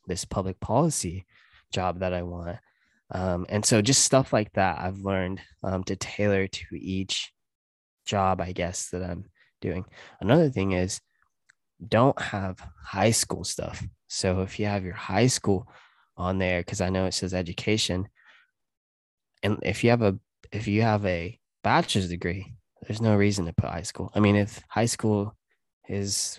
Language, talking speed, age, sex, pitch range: English, 170 wpm, 20-39, male, 90-105 Hz